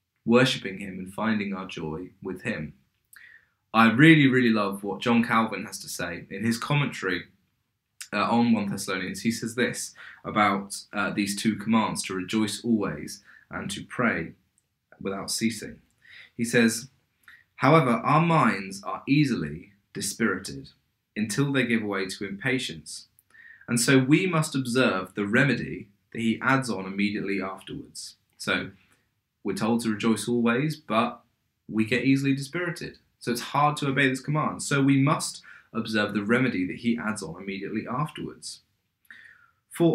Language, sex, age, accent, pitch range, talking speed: English, male, 20-39, British, 100-130 Hz, 150 wpm